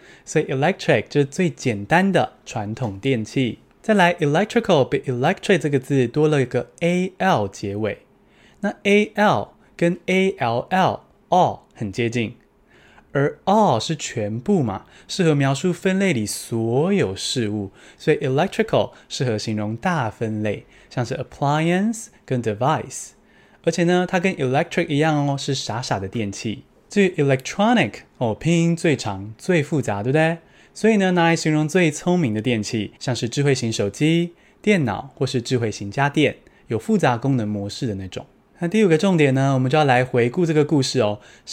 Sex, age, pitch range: male, 20-39, 120-175 Hz